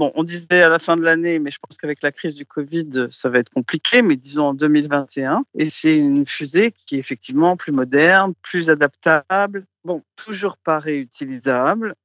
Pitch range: 140-180 Hz